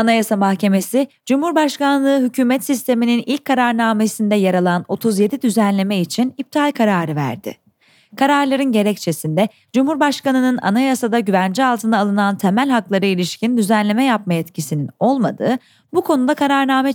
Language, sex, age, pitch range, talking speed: Turkish, female, 30-49, 185-260 Hz, 115 wpm